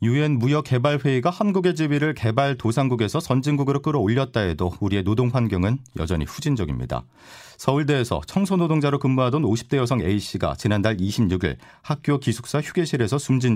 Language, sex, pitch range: Korean, male, 100-140 Hz